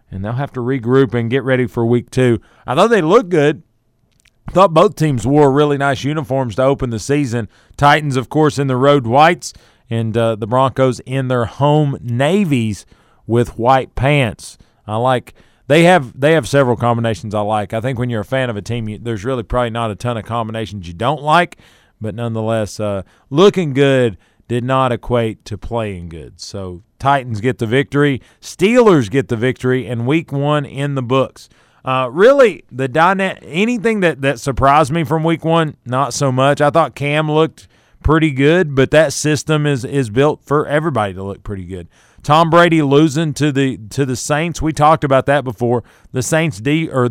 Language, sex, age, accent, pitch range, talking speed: English, male, 40-59, American, 115-150 Hz, 195 wpm